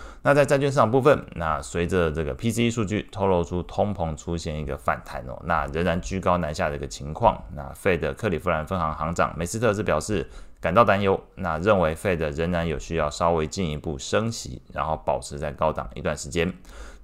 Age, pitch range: 20-39, 80-95 Hz